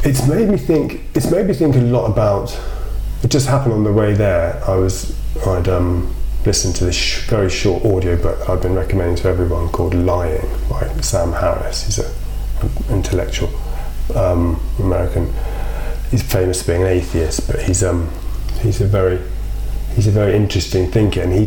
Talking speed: 180 wpm